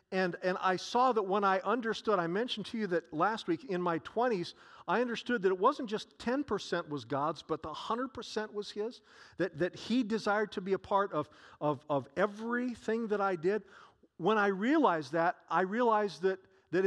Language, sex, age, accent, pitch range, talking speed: English, male, 50-69, American, 165-215 Hz, 195 wpm